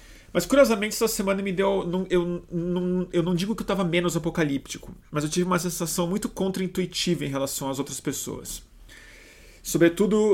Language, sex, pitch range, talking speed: Portuguese, male, 135-165 Hz, 165 wpm